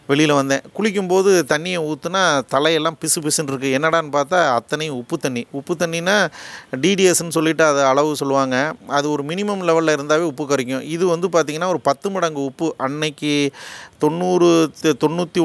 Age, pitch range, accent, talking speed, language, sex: 30-49, 140-165 Hz, native, 150 wpm, Tamil, male